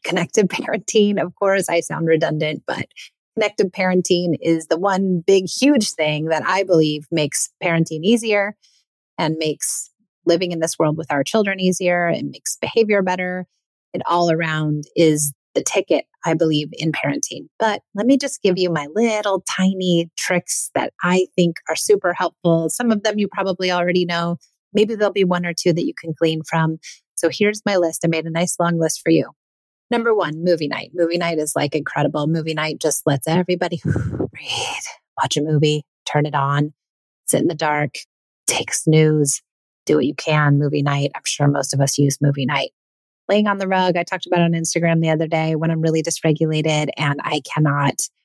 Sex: female